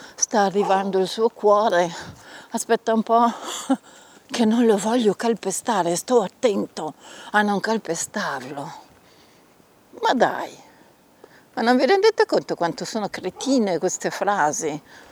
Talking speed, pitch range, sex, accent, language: 120 wpm, 175-235 Hz, female, native, Italian